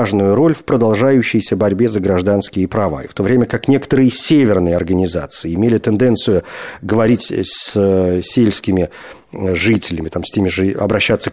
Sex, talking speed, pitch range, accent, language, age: male, 140 wpm, 110-145 Hz, native, Russian, 40-59